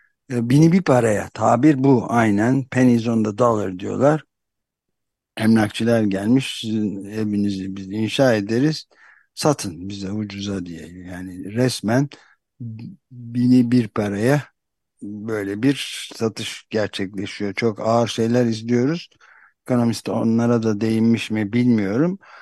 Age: 60-79